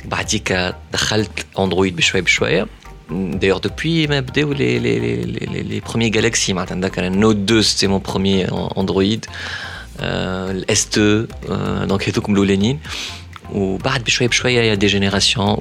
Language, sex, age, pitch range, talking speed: Arabic, male, 30-49, 90-105 Hz, 125 wpm